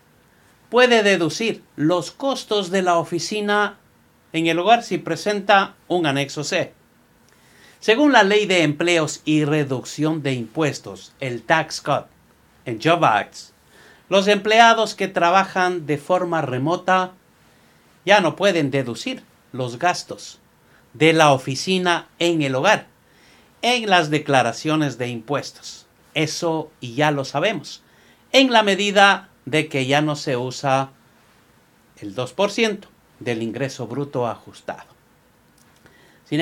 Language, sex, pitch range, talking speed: Spanish, male, 140-195 Hz, 120 wpm